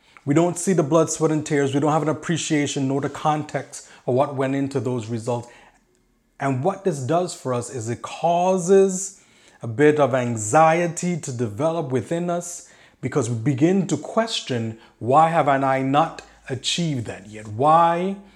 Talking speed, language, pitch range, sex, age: 170 wpm, English, 125-165 Hz, male, 30-49